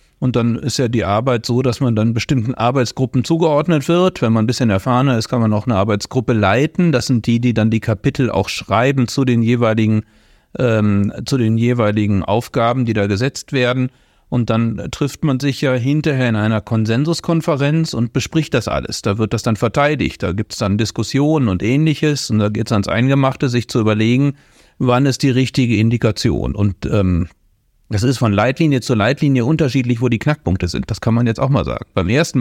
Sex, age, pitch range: male, 40-59, 110-130 Hz